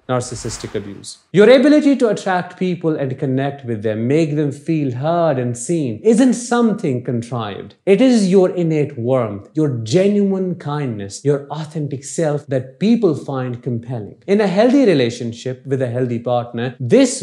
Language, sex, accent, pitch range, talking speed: English, male, Indian, 135-200 Hz, 155 wpm